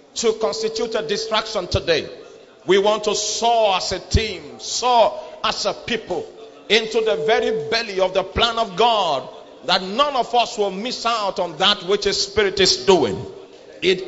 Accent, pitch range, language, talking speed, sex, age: Nigerian, 210-240 Hz, English, 170 wpm, male, 50-69